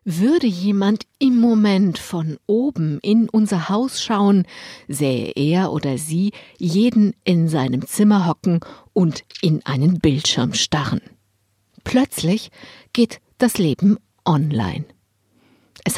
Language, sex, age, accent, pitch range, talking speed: German, female, 50-69, German, 160-215 Hz, 115 wpm